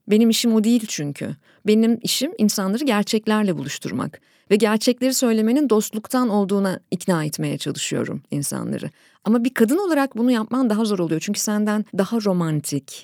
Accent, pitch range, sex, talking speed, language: native, 180-245 Hz, female, 145 wpm, Turkish